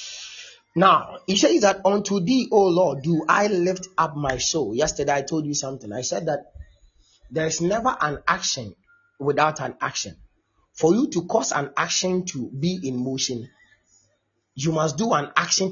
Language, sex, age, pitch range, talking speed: English, male, 30-49, 135-190 Hz, 170 wpm